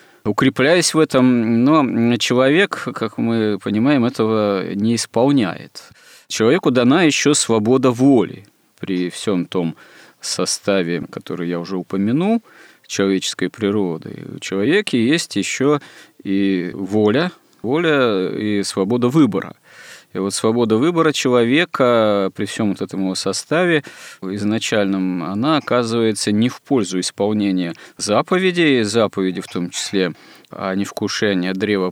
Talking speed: 115 wpm